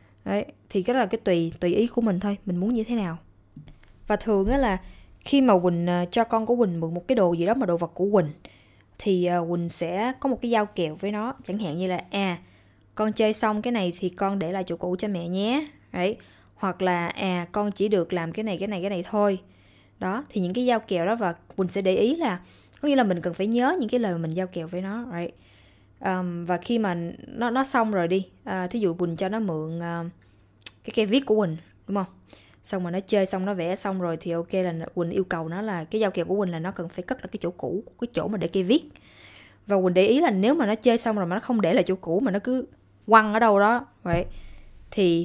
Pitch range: 170-215 Hz